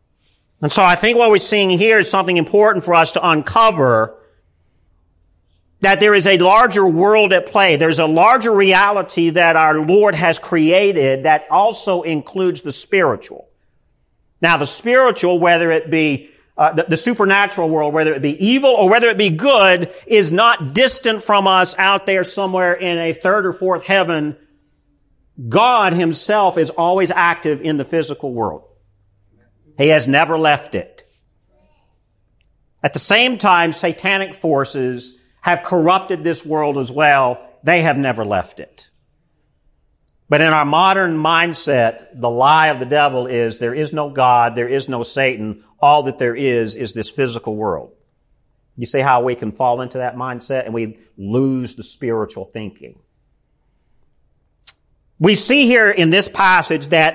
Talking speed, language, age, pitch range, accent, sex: 160 wpm, English, 50-69, 125-190 Hz, American, male